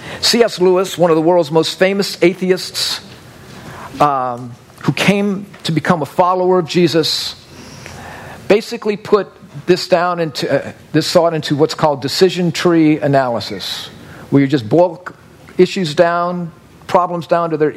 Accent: American